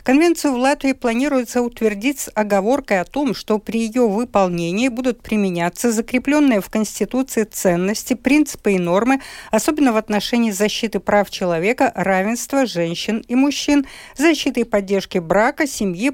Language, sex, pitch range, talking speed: Russian, female, 190-260 Hz, 140 wpm